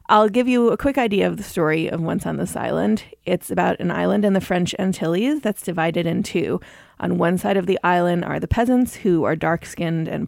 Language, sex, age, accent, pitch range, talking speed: English, female, 30-49, American, 170-210 Hz, 230 wpm